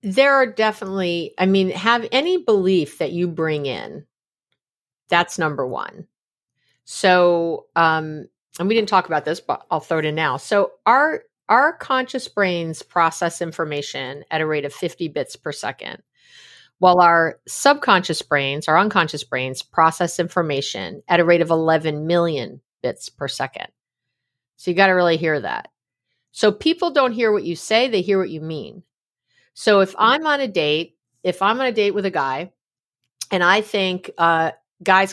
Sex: female